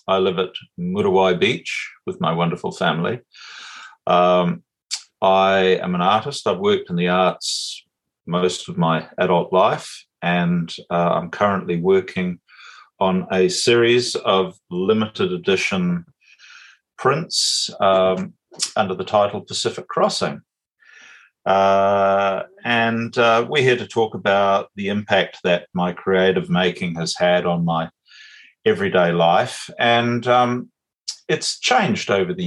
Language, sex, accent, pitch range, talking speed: English, male, Australian, 90-120 Hz, 125 wpm